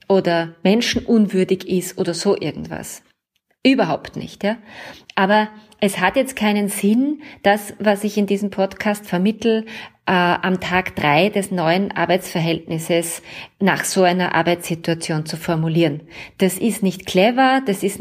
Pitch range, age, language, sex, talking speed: 180-230 Hz, 20-39, German, female, 135 wpm